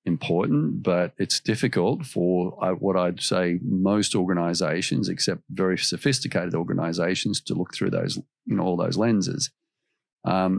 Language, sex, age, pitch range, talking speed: English, male, 50-69, 90-110 Hz, 140 wpm